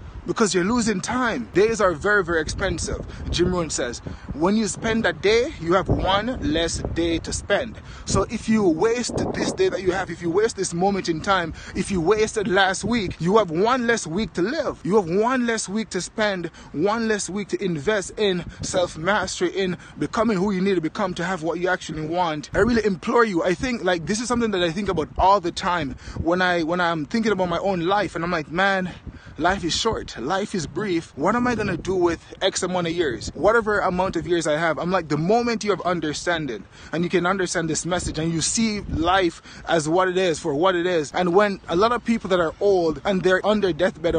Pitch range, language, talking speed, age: 170-205 Hz, English, 235 wpm, 20-39